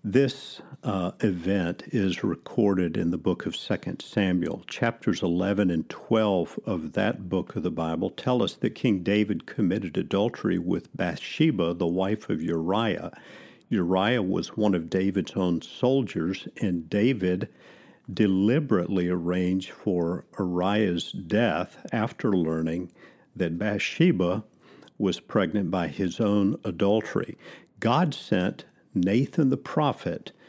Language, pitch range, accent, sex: English, 90-110 Hz, American, male